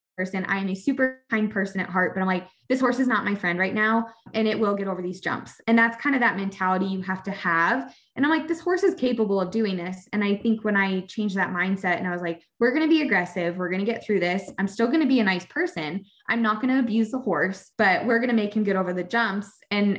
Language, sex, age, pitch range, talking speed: English, female, 20-39, 190-240 Hz, 290 wpm